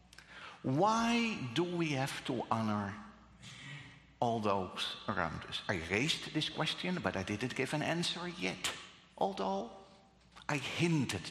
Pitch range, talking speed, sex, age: 115-190 Hz, 125 wpm, male, 60-79